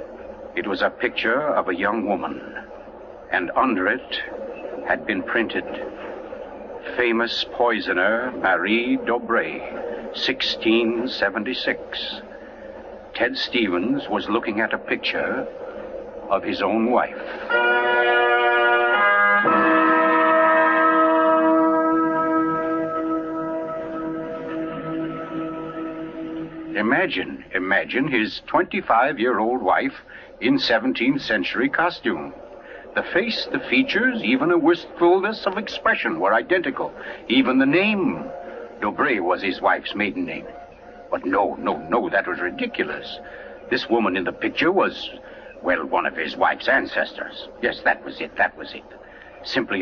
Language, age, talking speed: English, 60-79, 105 wpm